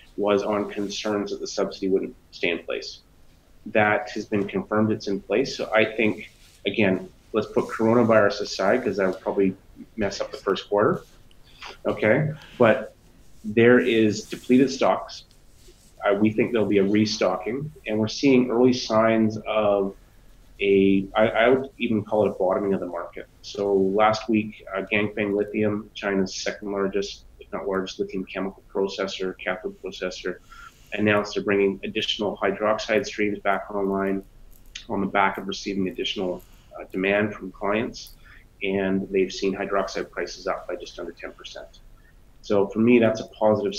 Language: English